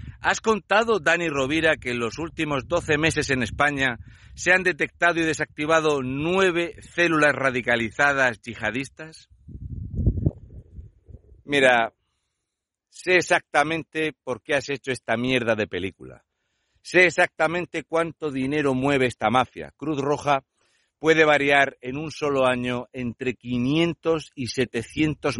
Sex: male